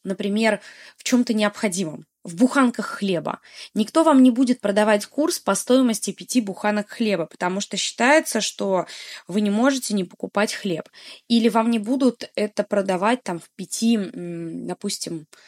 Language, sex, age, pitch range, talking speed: Russian, female, 20-39, 195-250 Hz, 145 wpm